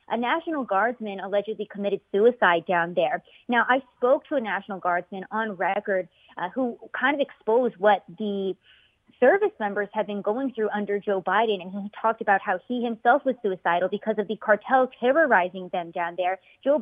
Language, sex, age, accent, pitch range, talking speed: English, female, 30-49, American, 195-245 Hz, 180 wpm